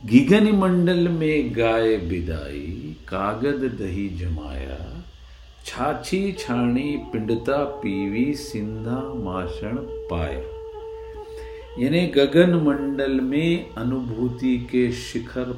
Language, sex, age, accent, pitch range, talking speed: Hindi, male, 50-69, native, 105-175 Hz, 65 wpm